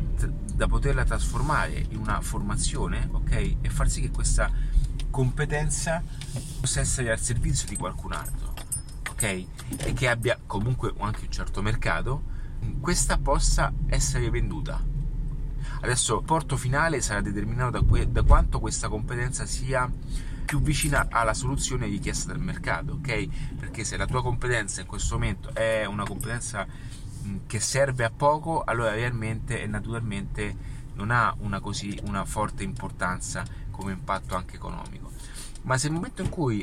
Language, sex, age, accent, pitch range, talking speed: Italian, male, 30-49, native, 110-140 Hz, 145 wpm